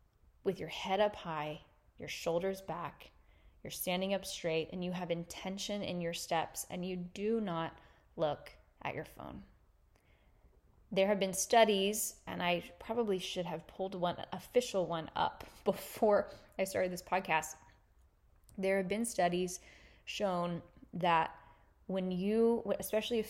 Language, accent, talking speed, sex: English, American, 145 wpm, female